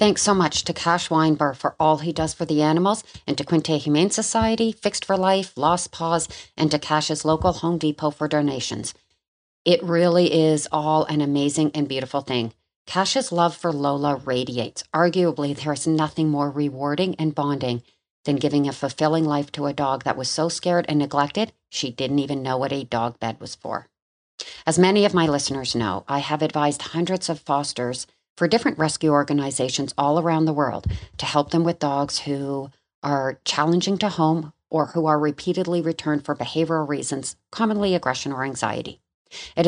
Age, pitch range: 40-59, 140-170 Hz